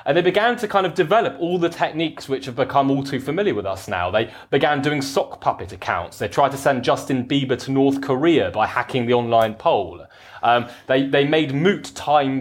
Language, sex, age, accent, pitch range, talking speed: English, male, 20-39, British, 115-150 Hz, 220 wpm